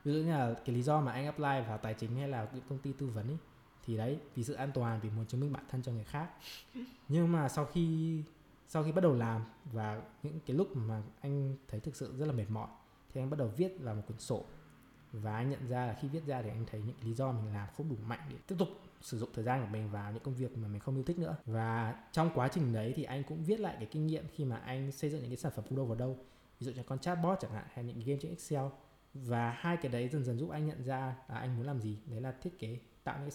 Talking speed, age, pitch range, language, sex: 295 wpm, 20-39, 115-150 Hz, Vietnamese, male